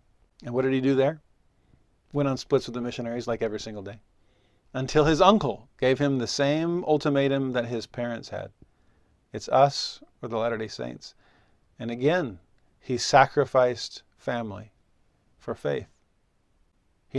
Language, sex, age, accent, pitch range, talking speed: English, male, 40-59, American, 115-145 Hz, 145 wpm